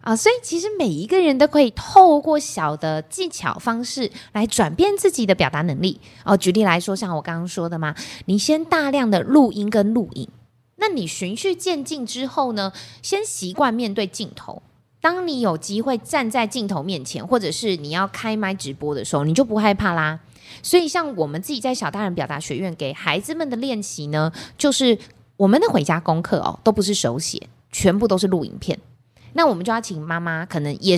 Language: Chinese